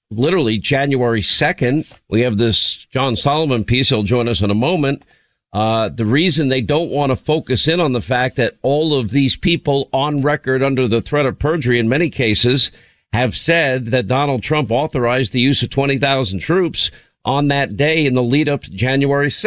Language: English